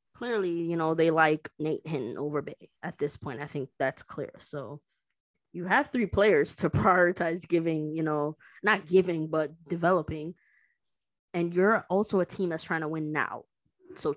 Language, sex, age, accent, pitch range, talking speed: English, female, 20-39, American, 150-185 Hz, 175 wpm